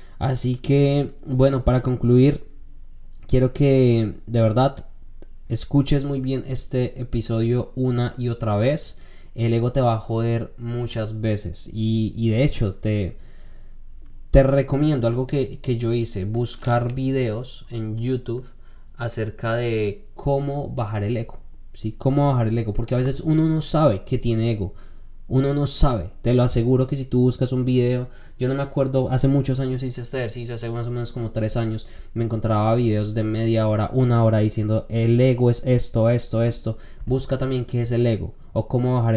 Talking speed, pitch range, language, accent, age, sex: 175 wpm, 110-130 Hz, Spanish, Colombian, 20-39, male